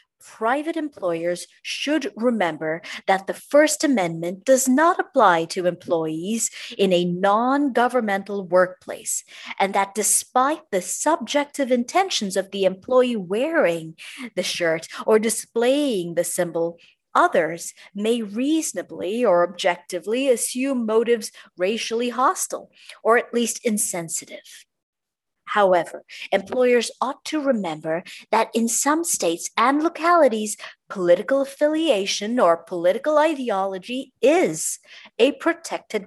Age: 40-59